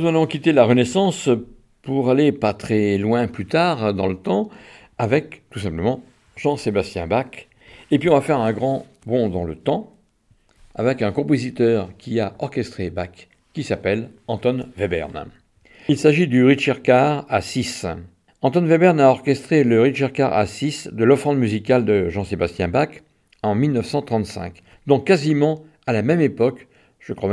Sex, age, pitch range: male, 50-69, 105-135 Hz